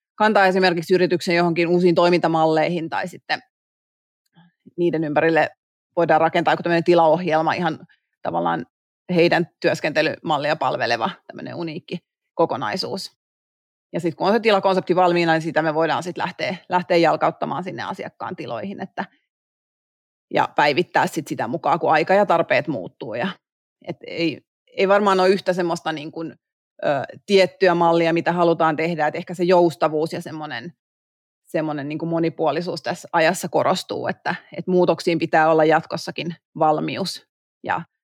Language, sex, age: Finnish, female, 30-49